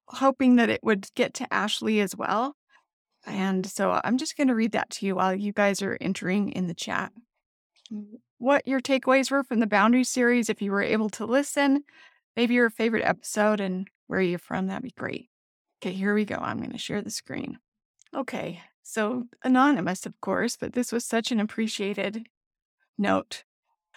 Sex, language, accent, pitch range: female, English, American, 210-255 Hz